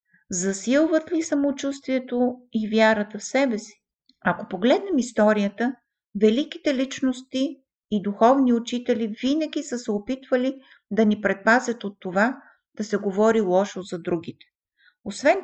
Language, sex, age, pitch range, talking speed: Bulgarian, female, 50-69, 205-260 Hz, 125 wpm